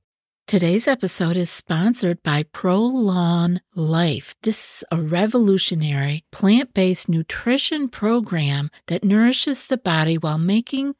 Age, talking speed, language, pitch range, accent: 50-69, 110 wpm, English, 165-220 Hz, American